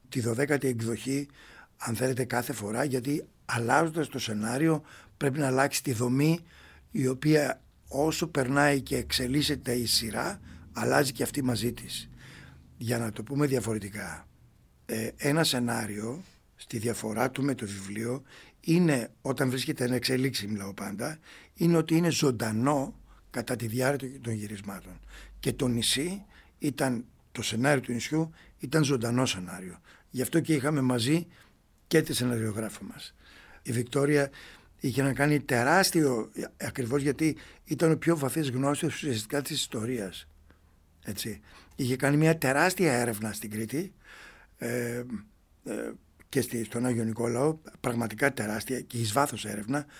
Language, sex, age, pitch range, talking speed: Greek, male, 60-79, 115-145 Hz, 135 wpm